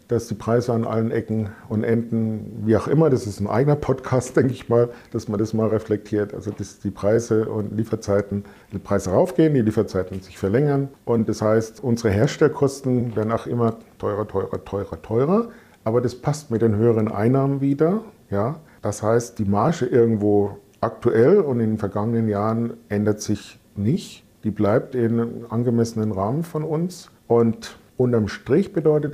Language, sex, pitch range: German, male, 105-130 Hz